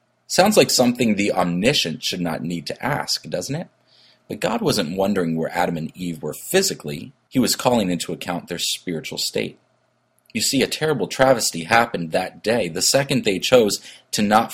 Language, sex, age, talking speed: English, male, 30-49, 180 wpm